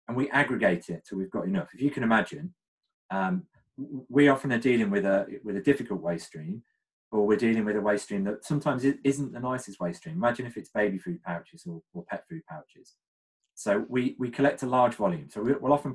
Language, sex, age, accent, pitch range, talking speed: English, male, 30-49, British, 115-180 Hz, 220 wpm